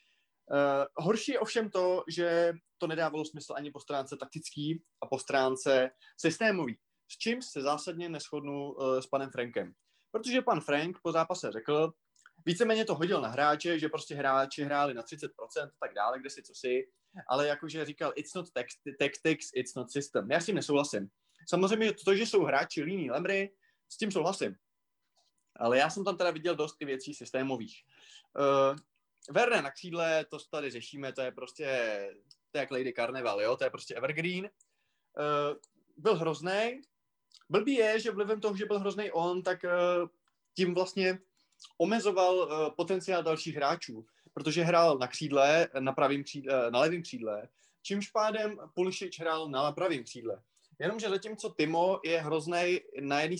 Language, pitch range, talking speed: Czech, 145-190 Hz, 165 wpm